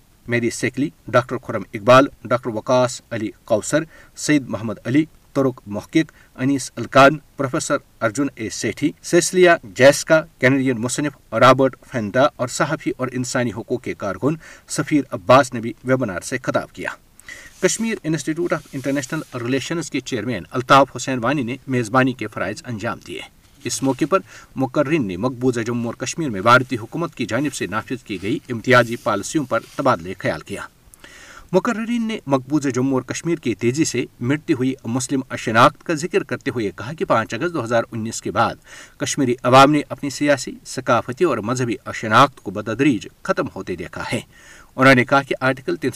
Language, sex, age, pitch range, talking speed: Urdu, male, 50-69, 120-145 Hz, 165 wpm